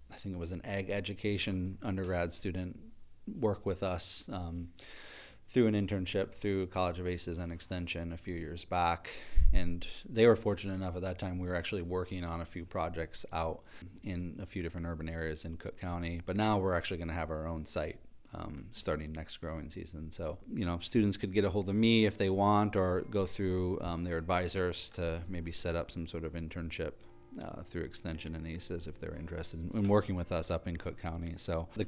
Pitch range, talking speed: 85-95 Hz, 215 wpm